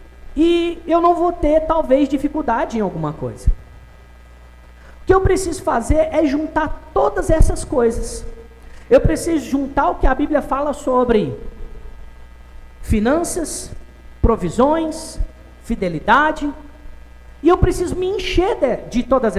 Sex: male